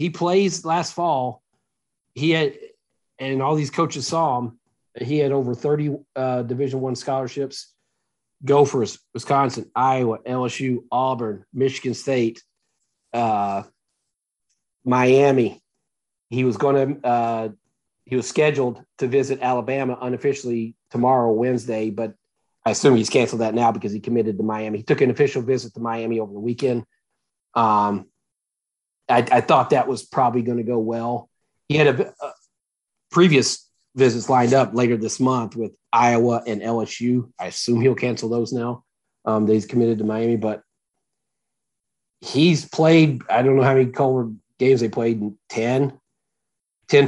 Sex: male